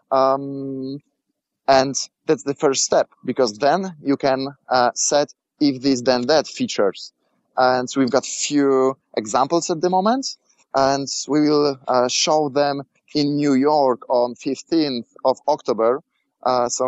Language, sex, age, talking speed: English, male, 20-39, 140 wpm